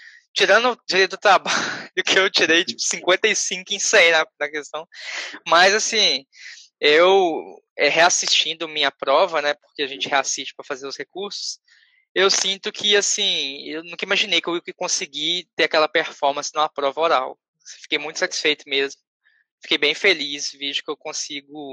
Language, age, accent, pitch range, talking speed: Portuguese, 10-29, Brazilian, 150-195 Hz, 160 wpm